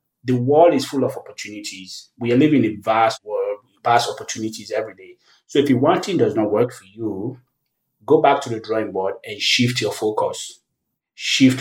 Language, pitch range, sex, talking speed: English, 110-130 Hz, male, 190 wpm